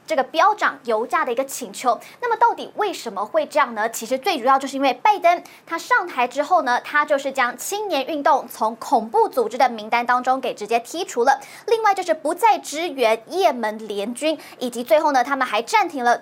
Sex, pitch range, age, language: male, 245-340 Hz, 20-39, Chinese